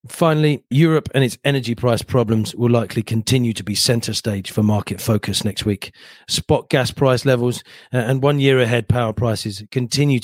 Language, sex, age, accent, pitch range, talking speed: English, male, 40-59, British, 110-130 Hz, 175 wpm